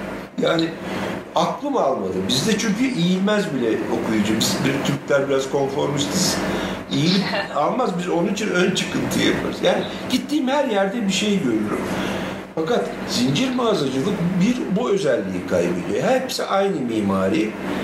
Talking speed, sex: 130 wpm, male